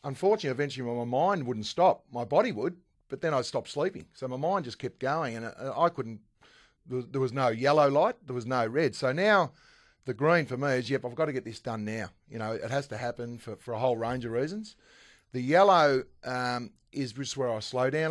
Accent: Australian